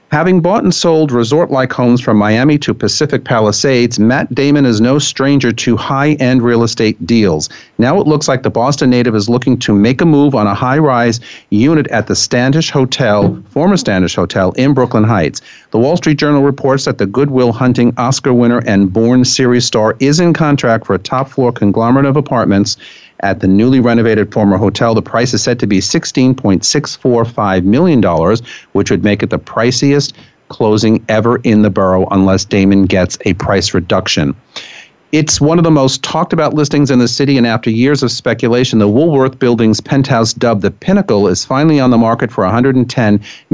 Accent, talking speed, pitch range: American, 185 wpm, 105-135 Hz